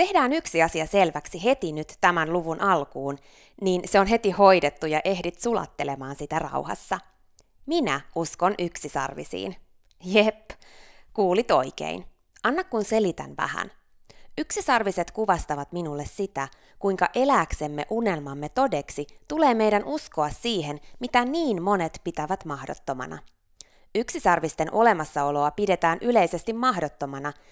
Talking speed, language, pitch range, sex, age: 110 wpm, Finnish, 150-215 Hz, female, 20-39